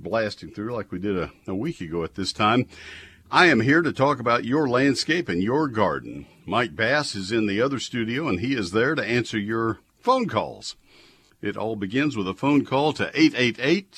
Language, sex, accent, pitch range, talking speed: English, male, American, 105-135 Hz, 205 wpm